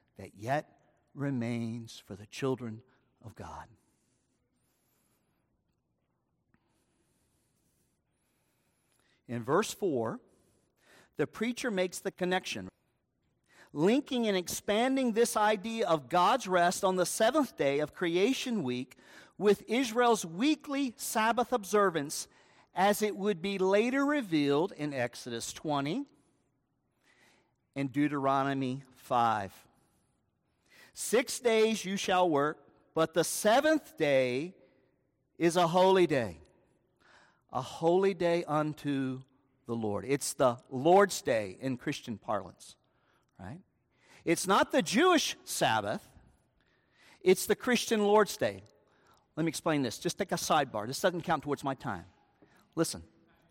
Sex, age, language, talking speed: male, 50-69, English, 110 wpm